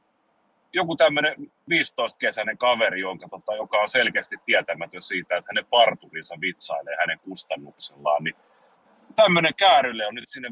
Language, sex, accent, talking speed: Finnish, male, native, 135 wpm